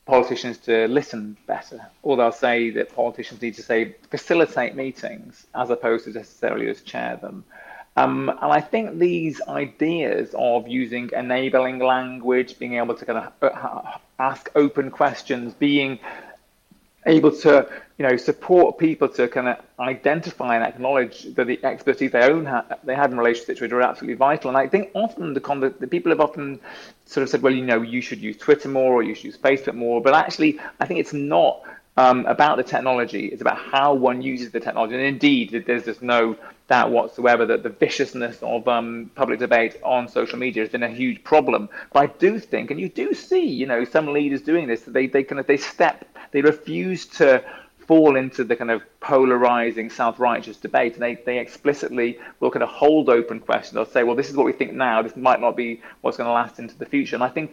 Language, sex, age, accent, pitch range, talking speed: English, male, 30-49, British, 120-145 Hz, 205 wpm